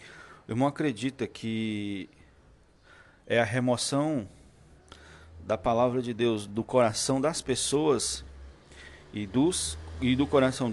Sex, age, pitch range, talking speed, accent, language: male, 40-59, 90-120 Hz, 105 wpm, Brazilian, Portuguese